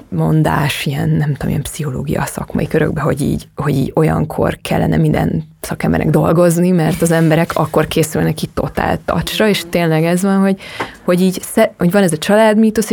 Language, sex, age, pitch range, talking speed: Hungarian, female, 20-39, 155-195 Hz, 170 wpm